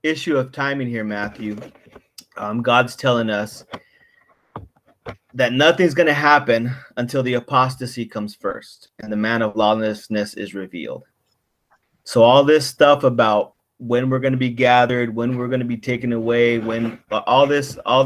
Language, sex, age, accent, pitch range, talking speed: English, male, 30-49, American, 110-130 Hz, 160 wpm